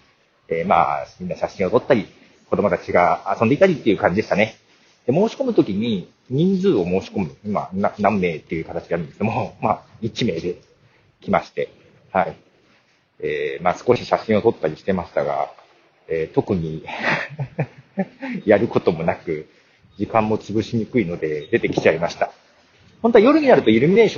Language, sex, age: Japanese, male, 40-59